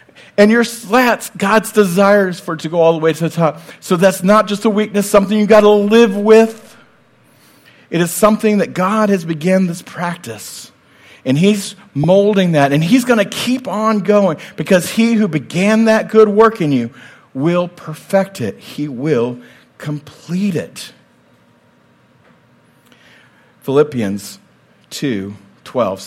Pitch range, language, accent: 140-200 Hz, English, American